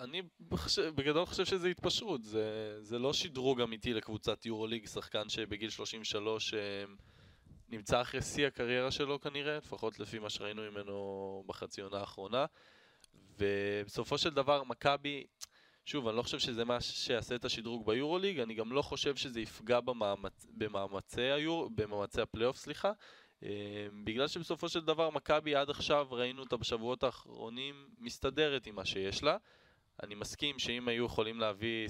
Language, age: Hebrew, 20-39